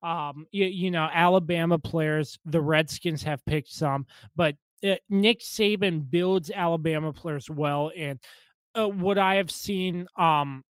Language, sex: English, male